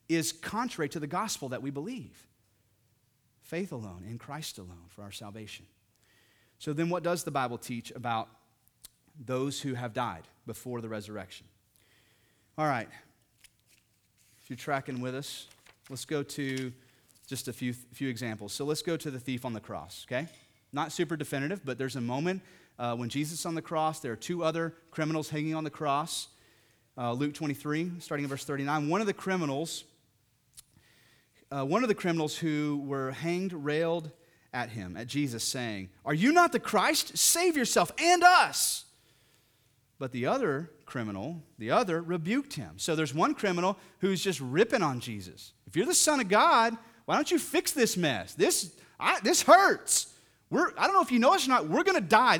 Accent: American